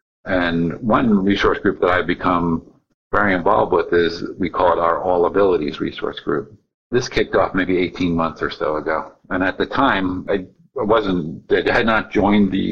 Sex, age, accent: male, 50-69, American